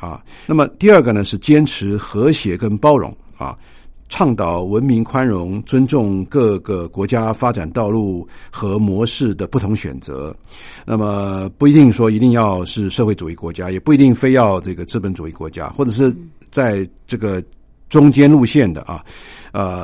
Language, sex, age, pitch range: Chinese, male, 50-69, 95-130 Hz